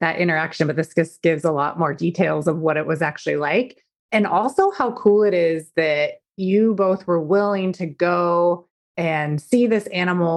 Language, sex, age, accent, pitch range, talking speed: English, female, 30-49, American, 165-225 Hz, 190 wpm